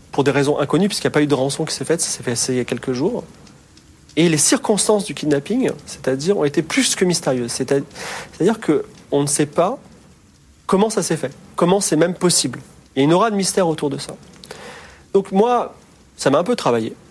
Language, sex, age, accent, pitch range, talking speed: French, male, 40-59, French, 130-180 Hz, 220 wpm